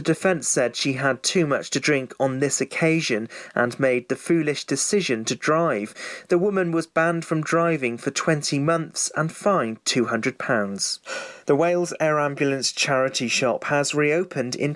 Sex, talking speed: male, 165 wpm